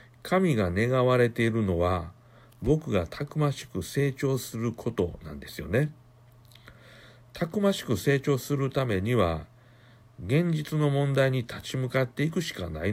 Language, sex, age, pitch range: Japanese, male, 60-79, 110-140 Hz